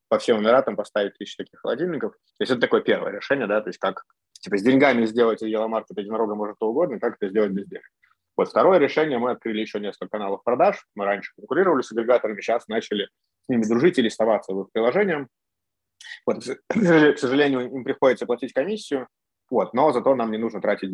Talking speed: 190 wpm